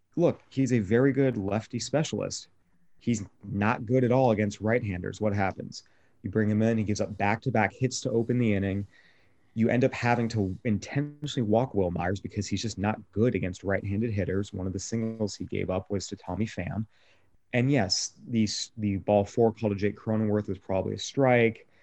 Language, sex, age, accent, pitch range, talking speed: English, male, 30-49, American, 100-125 Hz, 195 wpm